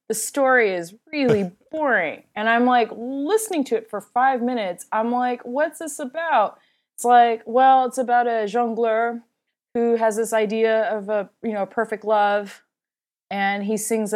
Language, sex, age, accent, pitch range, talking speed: English, female, 30-49, American, 190-245 Hz, 165 wpm